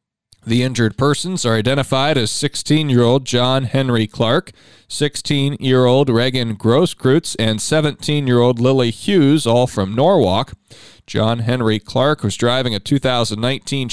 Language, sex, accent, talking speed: English, male, American, 115 wpm